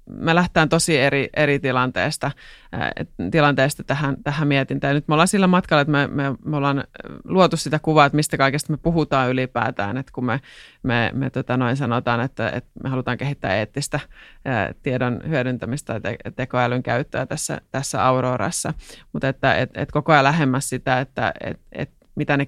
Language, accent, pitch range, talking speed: Finnish, native, 125-150 Hz, 180 wpm